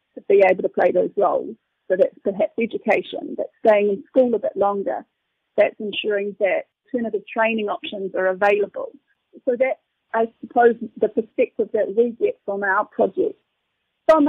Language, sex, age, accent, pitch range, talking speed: English, female, 40-59, British, 205-275 Hz, 165 wpm